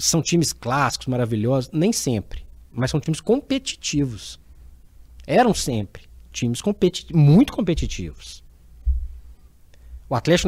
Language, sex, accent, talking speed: Portuguese, male, Brazilian, 105 wpm